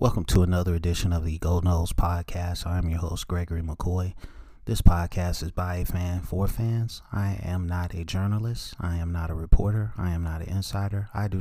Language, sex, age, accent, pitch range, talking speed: English, male, 30-49, American, 85-95 Hz, 210 wpm